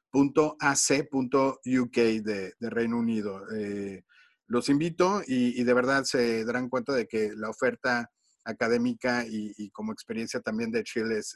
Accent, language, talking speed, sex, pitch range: Mexican, Spanish, 150 wpm, male, 120-145 Hz